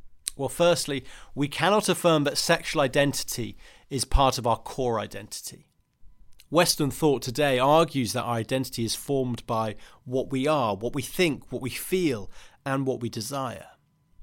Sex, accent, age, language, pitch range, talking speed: male, British, 30-49, English, 115-145 Hz, 155 wpm